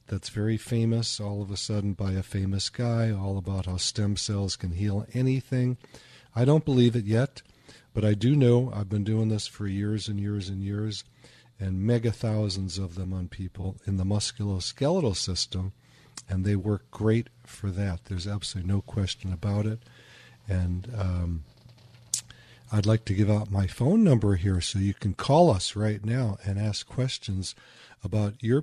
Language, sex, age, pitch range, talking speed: English, male, 50-69, 100-125 Hz, 175 wpm